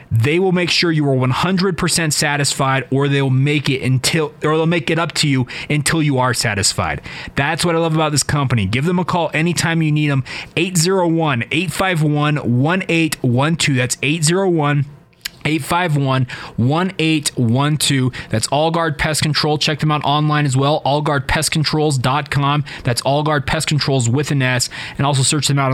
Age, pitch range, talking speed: 20-39, 130-165 Hz, 160 wpm